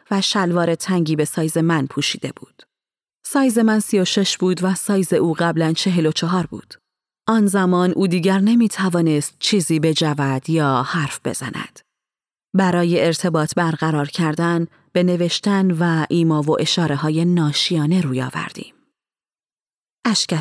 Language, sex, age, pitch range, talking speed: Persian, female, 30-49, 155-195 Hz, 140 wpm